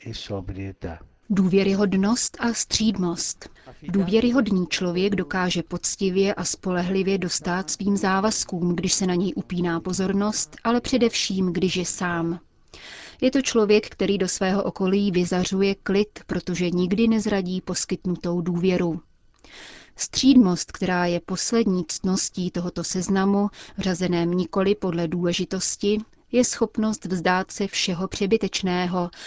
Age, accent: 30-49, native